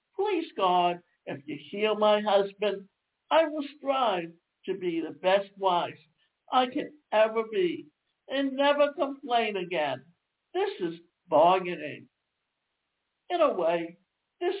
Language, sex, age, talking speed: English, male, 60-79, 125 wpm